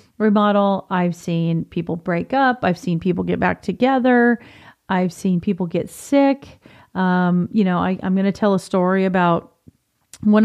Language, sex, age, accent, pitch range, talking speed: English, female, 40-59, American, 180-220 Hz, 165 wpm